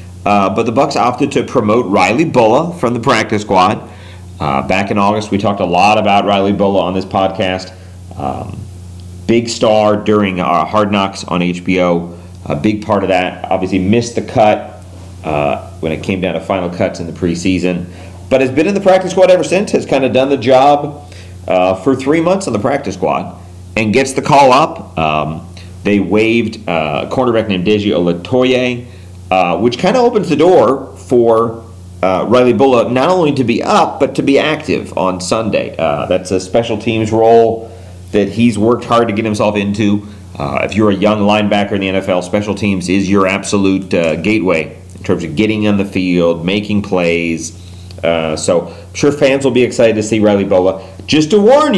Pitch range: 90-115 Hz